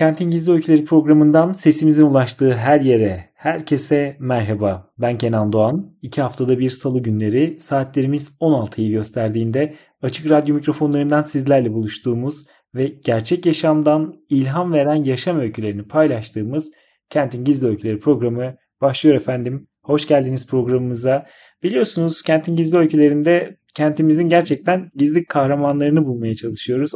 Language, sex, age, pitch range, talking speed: Turkish, male, 30-49, 125-155 Hz, 120 wpm